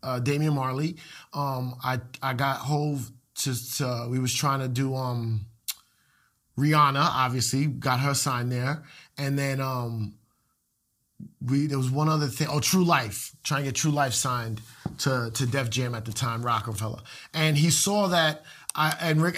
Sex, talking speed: male, 175 wpm